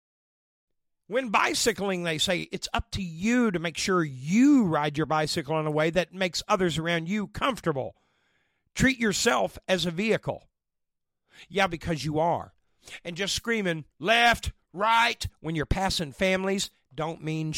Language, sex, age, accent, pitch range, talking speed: English, male, 50-69, American, 145-195 Hz, 150 wpm